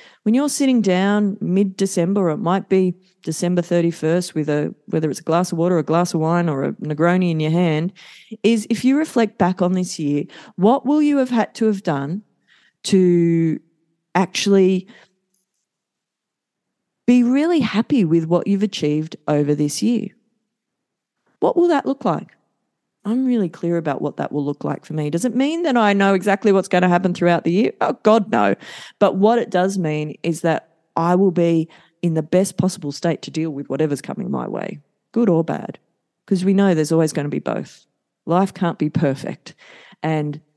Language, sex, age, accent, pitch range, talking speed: English, female, 40-59, Australian, 150-195 Hz, 190 wpm